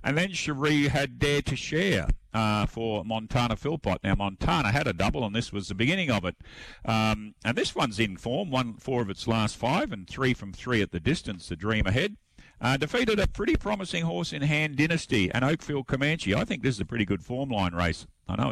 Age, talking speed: 50-69, 225 wpm